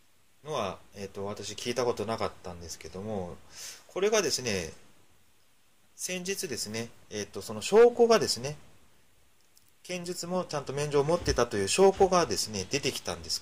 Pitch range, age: 100-155 Hz, 30-49